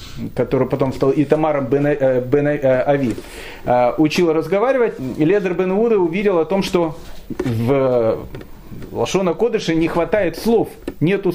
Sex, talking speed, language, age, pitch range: male, 115 wpm, Russian, 30-49, 145-190 Hz